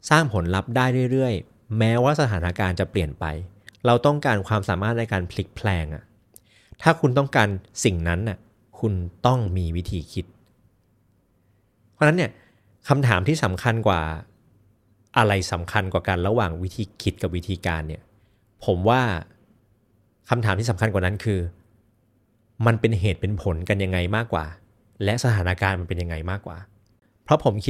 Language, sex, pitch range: Thai, male, 95-120 Hz